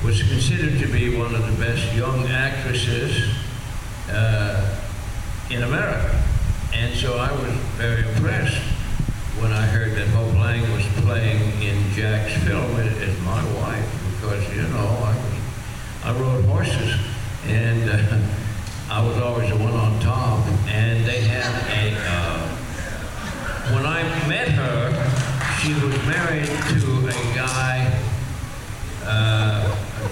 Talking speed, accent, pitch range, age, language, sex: 130 wpm, American, 105-125 Hz, 60-79, English, male